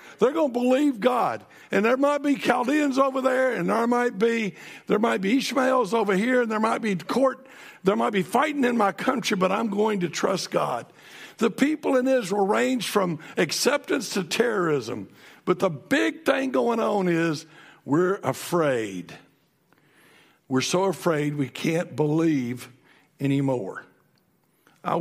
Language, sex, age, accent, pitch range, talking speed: English, male, 60-79, American, 165-240 Hz, 160 wpm